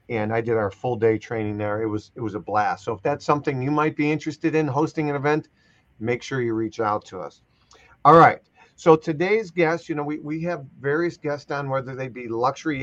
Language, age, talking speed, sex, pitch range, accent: English, 40-59, 235 wpm, male, 125-155 Hz, American